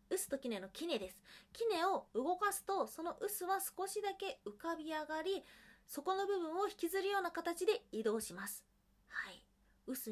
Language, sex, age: Japanese, female, 20-39